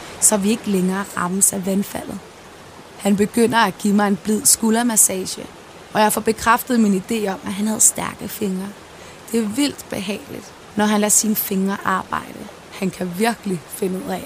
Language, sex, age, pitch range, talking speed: Danish, female, 20-39, 190-220 Hz, 180 wpm